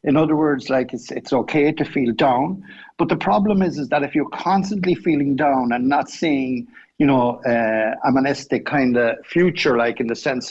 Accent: Irish